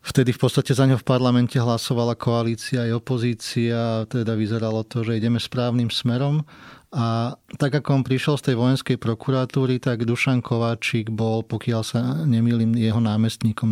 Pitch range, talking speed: 115-125 Hz, 160 wpm